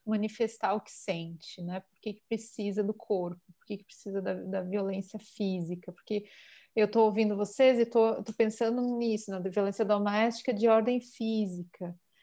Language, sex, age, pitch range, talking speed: Portuguese, female, 30-49, 195-220 Hz, 160 wpm